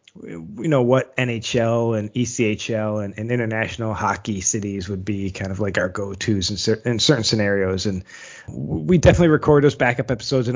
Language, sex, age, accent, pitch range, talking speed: English, male, 20-39, American, 105-125 Hz, 175 wpm